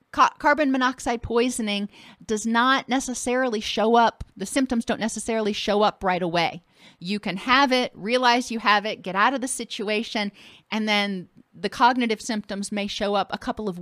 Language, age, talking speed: English, 40-59, 175 wpm